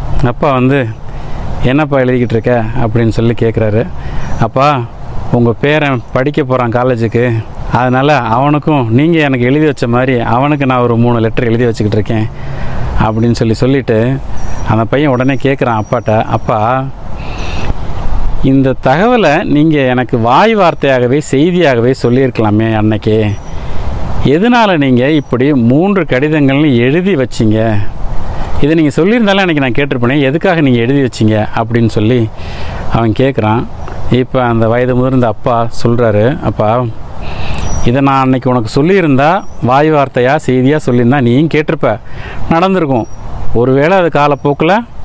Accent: native